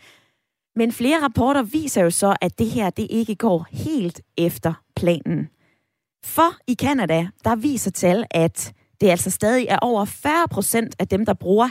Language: Danish